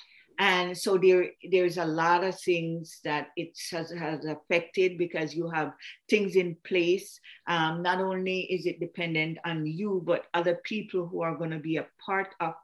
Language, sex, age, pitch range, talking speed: English, female, 50-69, 155-185 Hz, 180 wpm